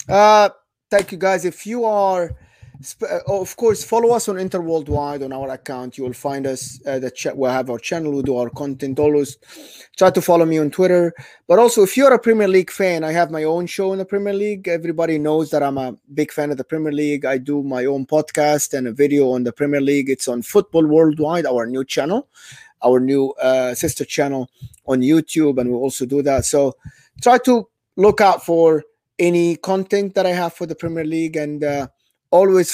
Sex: male